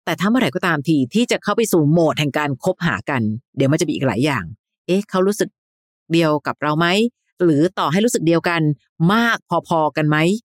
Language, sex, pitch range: Thai, female, 145-185 Hz